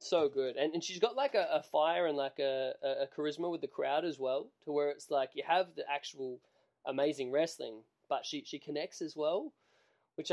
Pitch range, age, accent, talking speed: 140-190 Hz, 20-39, Australian, 215 wpm